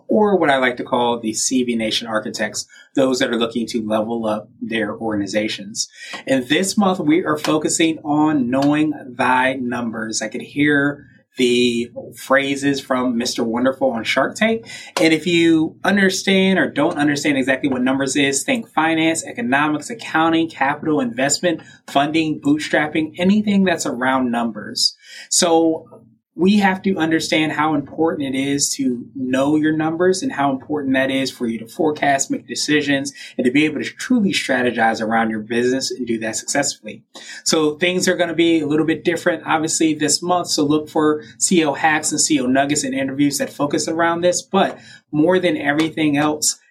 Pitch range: 125-165 Hz